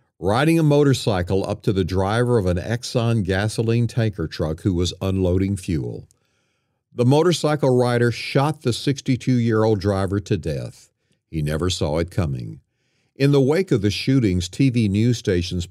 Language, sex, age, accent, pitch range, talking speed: English, male, 50-69, American, 95-125 Hz, 155 wpm